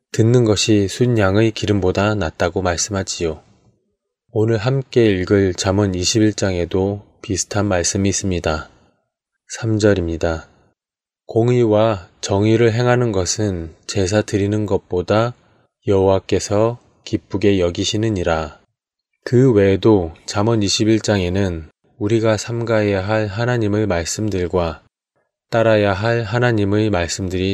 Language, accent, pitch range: Korean, native, 95-110 Hz